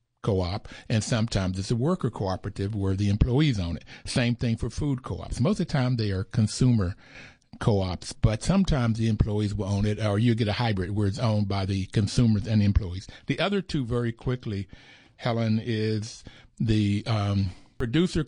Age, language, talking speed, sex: 60-79, English, 180 wpm, male